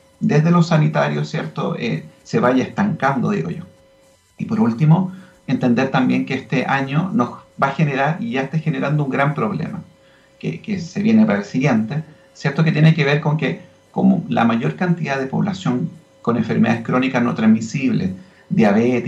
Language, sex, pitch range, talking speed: Spanish, male, 145-200 Hz, 175 wpm